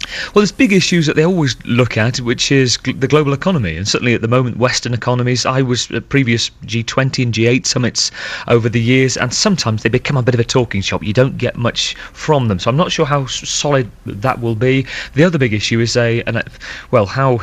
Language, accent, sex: English, British, male